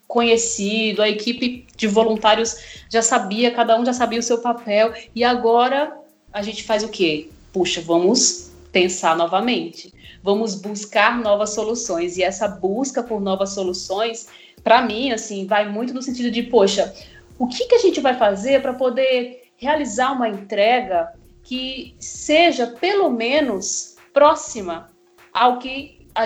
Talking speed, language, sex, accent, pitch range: 145 wpm, Portuguese, female, Brazilian, 185-230 Hz